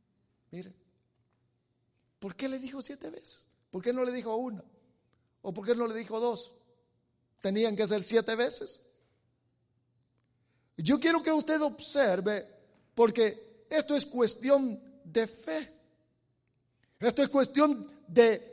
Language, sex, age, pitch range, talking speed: English, male, 50-69, 165-265 Hz, 130 wpm